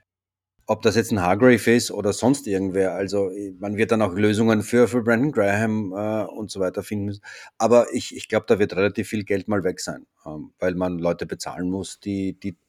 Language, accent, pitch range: German, German, 95-115 Hz